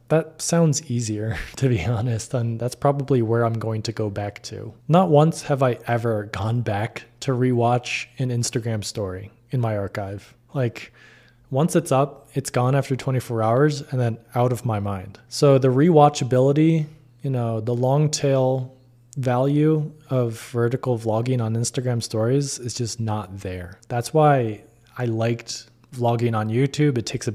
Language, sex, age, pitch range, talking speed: English, male, 20-39, 110-130 Hz, 165 wpm